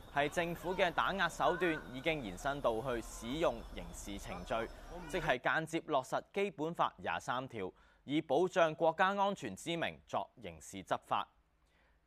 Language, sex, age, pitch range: Chinese, male, 20-39, 120-195 Hz